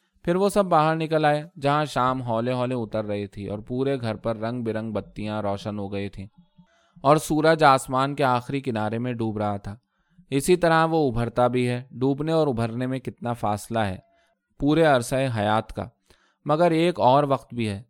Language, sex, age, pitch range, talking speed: Urdu, male, 20-39, 105-135 Hz, 195 wpm